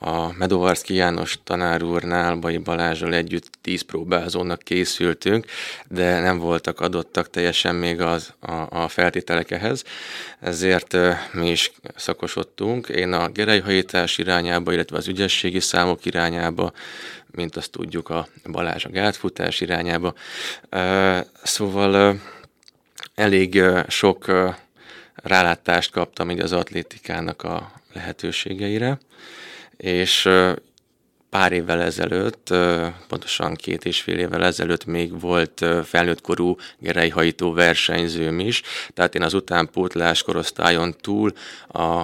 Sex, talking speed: male, 105 wpm